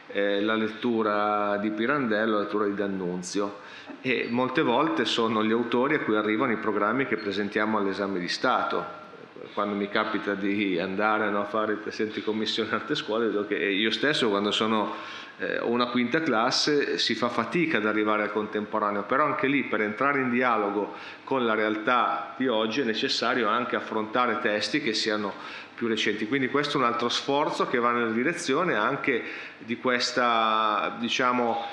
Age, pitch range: 40-59, 105-125 Hz